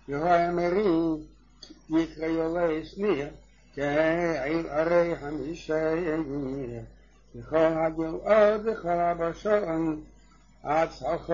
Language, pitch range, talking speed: English, 150-170 Hz, 70 wpm